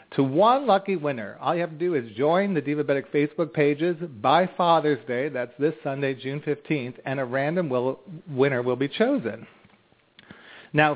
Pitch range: 125-160 Hz